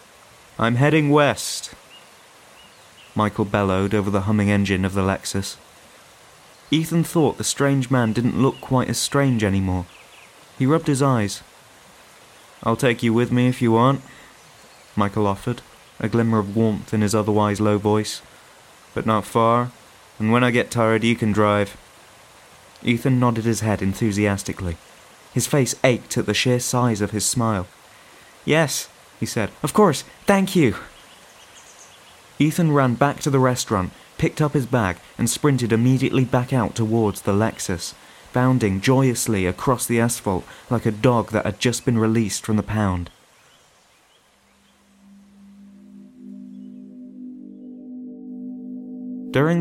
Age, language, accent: 20-39, English, British